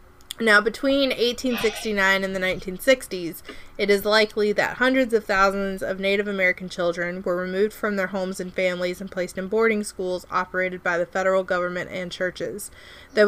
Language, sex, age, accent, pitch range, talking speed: English, female, 30-49, American, 180-210 Hz, 165 wpm